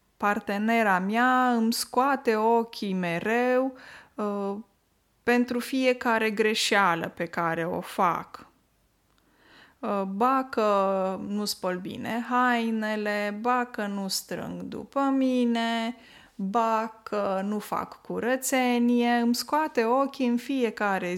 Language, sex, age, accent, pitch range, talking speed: Romanian, female, 20-39, native, 205-260 Hz, 95 wpm